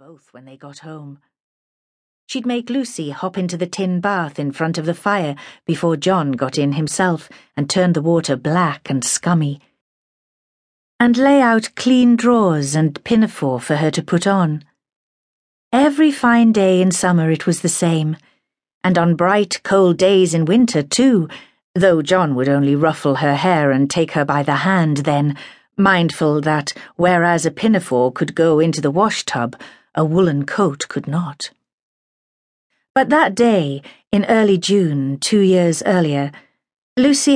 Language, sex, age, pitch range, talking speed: English, female, 40-59, 155-220 Hz, 160 wpm